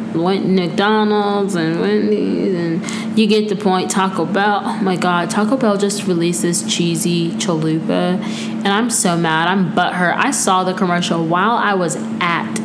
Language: English